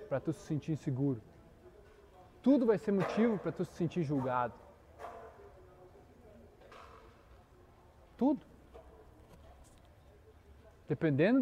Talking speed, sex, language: 85 wpm, male, Portuguese